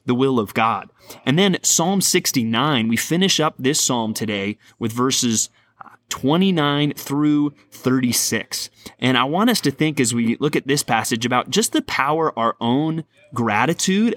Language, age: English, 30-49